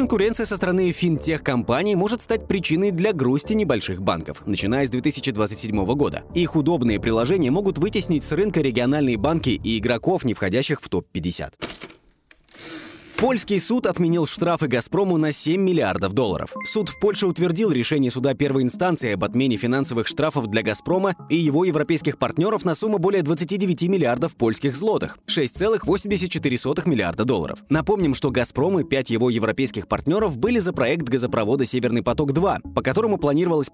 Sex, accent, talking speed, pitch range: male, native, 150 wpm, 125-180 Hz